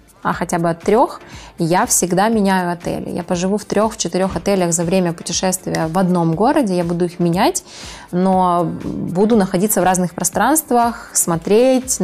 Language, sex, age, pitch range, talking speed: Ukrainian, female, 20-39, 185-220 Hz, 155 wpm